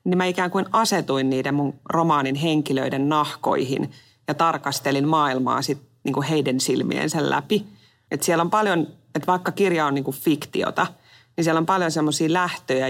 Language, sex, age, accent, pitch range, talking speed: Finnish, female, 30-49, native, 135-155 Hz, 155 wpm